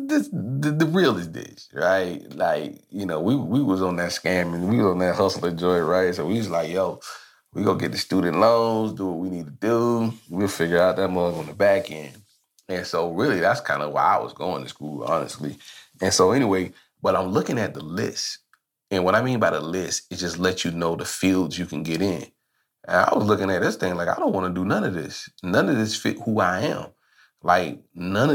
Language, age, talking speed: English, 30-49, 245 wpm